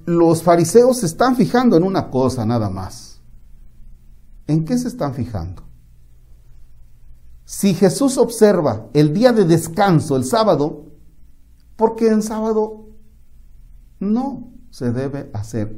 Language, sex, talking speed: Spanish, male, 120 wpm